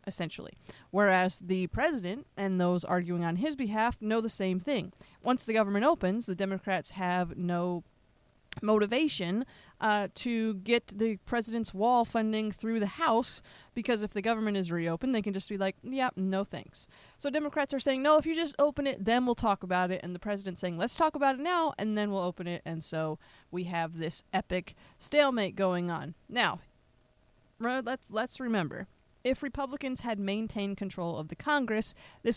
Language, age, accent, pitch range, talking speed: English, 20-39, American, 180-245 Hz, 180 wpm